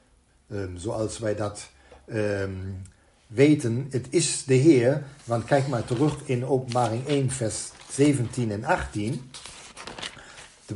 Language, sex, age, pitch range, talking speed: Dutch, male, 50-69, 115-145 Hz, 110 wpm